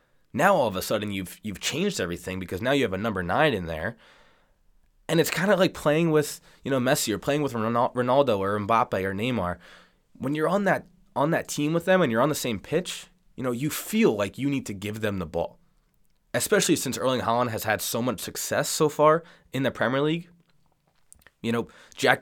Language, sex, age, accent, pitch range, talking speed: English, male, 20-39, American, 105-150 Hz, 220 wpm